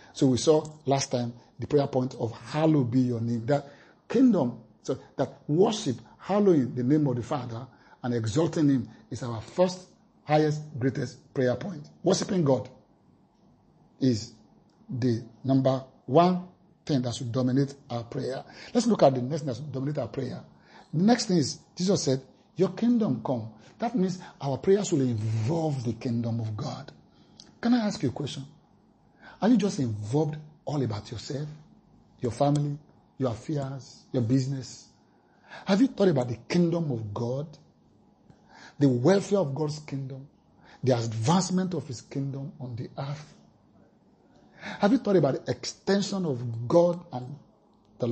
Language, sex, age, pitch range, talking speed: English, male, 50-69, 125-170 Hz, 155 wpm